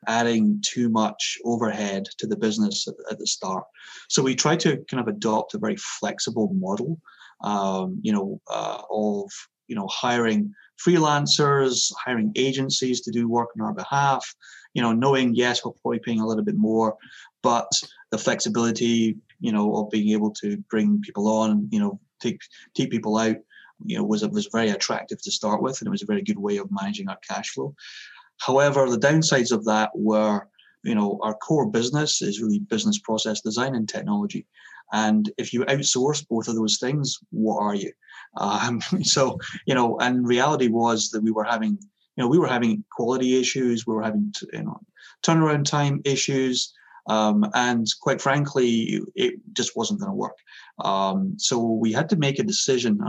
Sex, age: male, 30-49